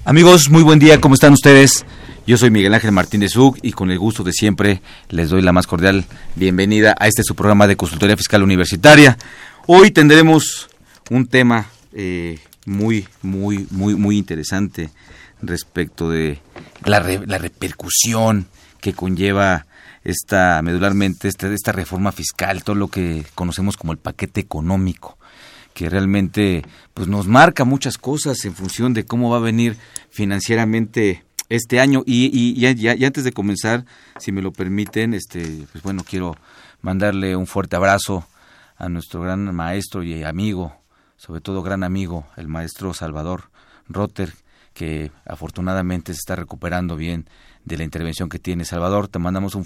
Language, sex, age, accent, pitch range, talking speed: Spanish, male, 40-59, Mexican, 90-115 Hz, 155 wpm